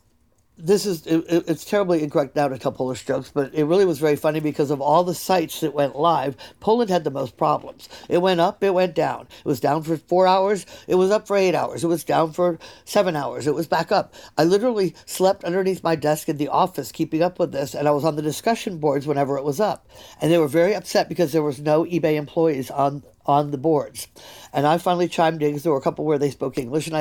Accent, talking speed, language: American, 245 wpm, English